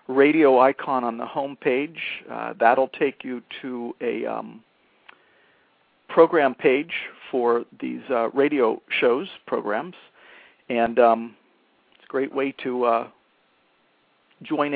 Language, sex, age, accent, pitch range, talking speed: English, male, 50-69, American, 120-145 Hz, 120 wpm